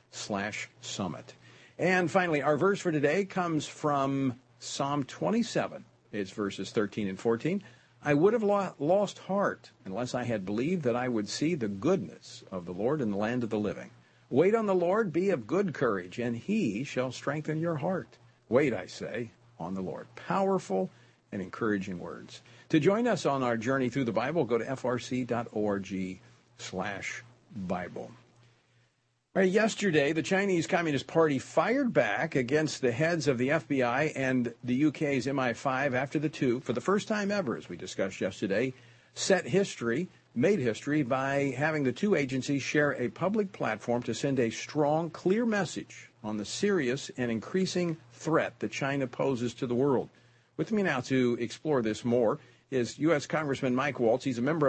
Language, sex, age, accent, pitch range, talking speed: English, male, 50-69, American, 120-160 Hz, 170 wpm